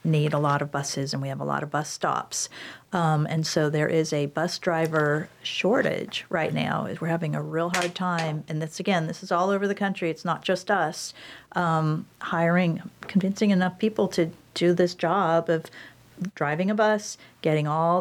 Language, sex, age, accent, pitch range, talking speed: English, female, 50-69, American, 155-180 Hz, 195 wpm